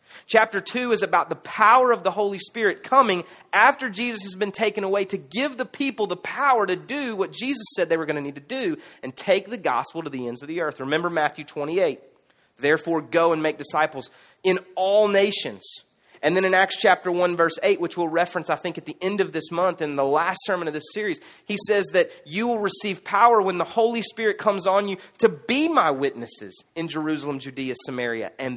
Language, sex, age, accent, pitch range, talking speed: English, male, 30-49, American, 165-225 Hz, 220 wpm